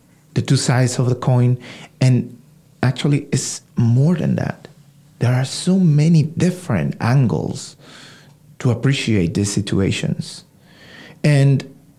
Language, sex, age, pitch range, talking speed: English, male, 50-69, 130-175 Hz, 115 wpm